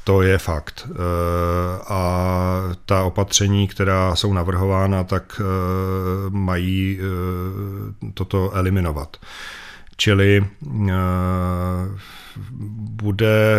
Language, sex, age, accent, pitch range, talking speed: Czech, male, 40-59, native, 95-105 Hz, 65 wpm